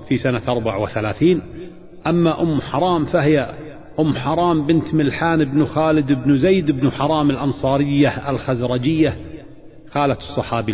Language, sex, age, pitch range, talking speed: Arabic, male, 40-59, 120-150 Hz, 125 wpm